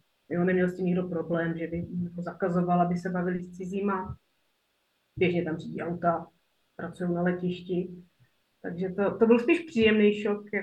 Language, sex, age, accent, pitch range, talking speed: Czech, female, 30-49, native, 195-235 Hz, 165 wpm